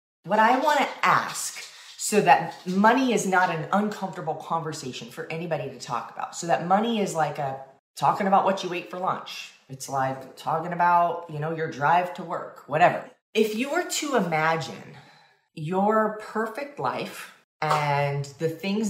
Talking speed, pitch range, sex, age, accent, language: 170 wpm, 150-195 Hz, female, 30-49, American, English